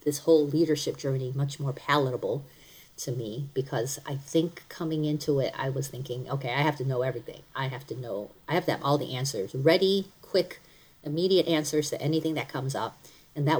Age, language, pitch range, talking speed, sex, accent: 40-59, English, 130-160 Hz, 205 wpm, female, American